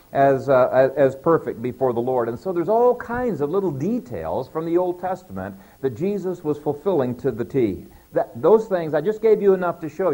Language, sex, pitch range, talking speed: English, male, 135-185 Hz, 215 wpm